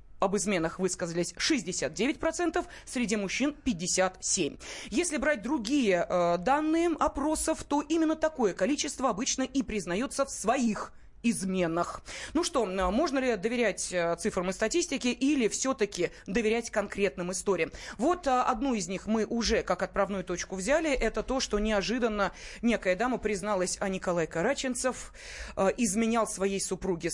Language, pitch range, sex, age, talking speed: Russian, 195-260 Hz, female, 20-39, 130 wpm